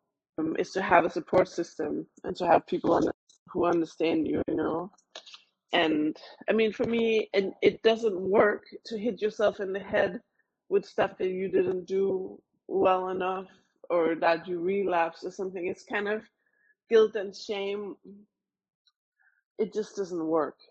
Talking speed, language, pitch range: 155 wpm, English, 160-200 Hz